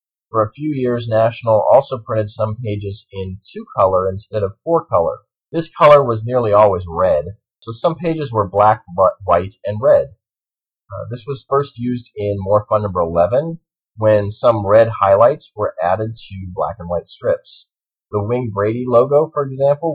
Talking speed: 170 wpm